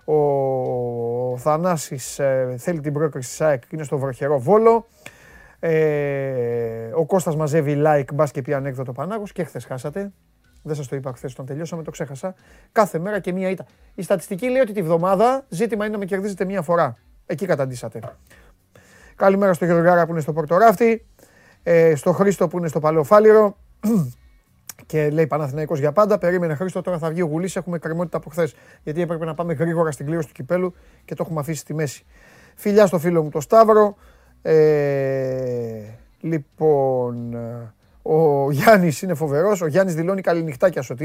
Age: 30-49